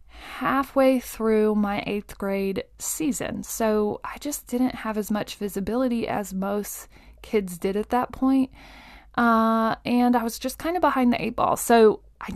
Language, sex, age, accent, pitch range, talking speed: English, female, 20-39, American, 195-245 Hz, 165 wpm